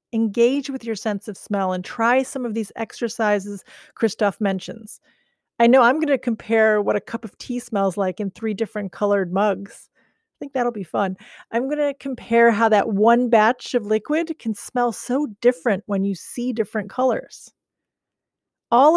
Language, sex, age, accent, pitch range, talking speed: English, female, 40-59, American, 205-255 Hz, 180 wpm